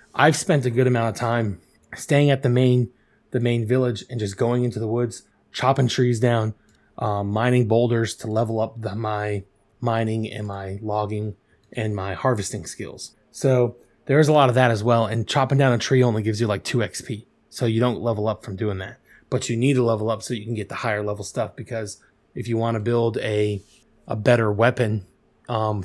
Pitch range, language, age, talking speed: 105-125 Hz, English, 20-39, 210 wpm